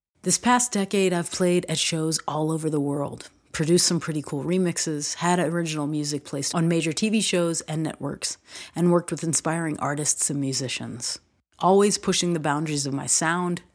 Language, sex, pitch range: English, female, 145-175 Hz